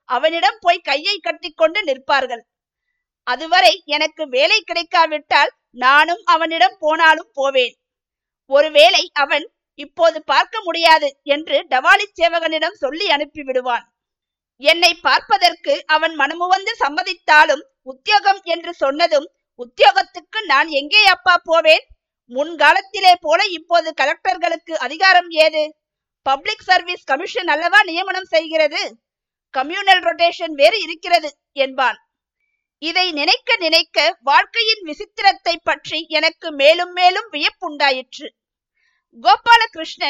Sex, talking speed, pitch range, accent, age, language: female, 95 wpm, 295-370 Hz, native, 50-69, Tamil